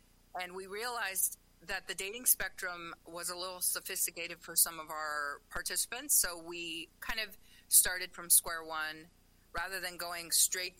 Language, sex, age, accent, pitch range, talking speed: English, female, 40-59, American, 155-190 Hz, 155 wpm